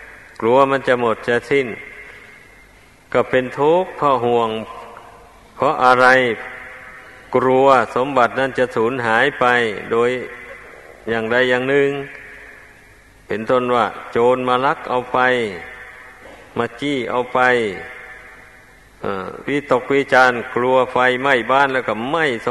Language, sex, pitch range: Thai, male, 125-140 Hz